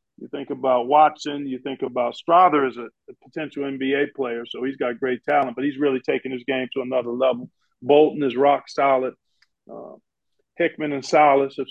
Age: 40-59